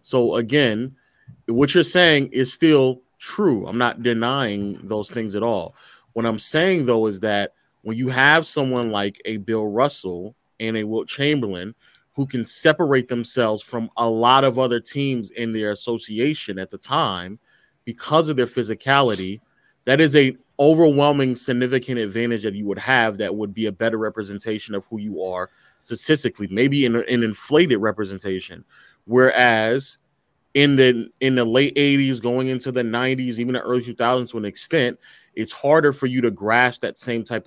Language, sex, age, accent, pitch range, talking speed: English, male, 30-49, American, 110-130 Hz, 170 wpm